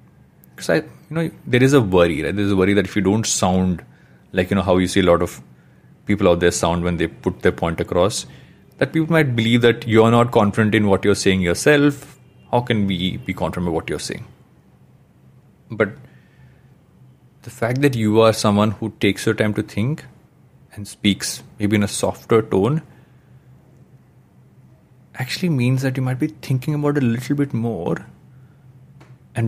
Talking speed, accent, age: 185 wpm, Indian, 30-49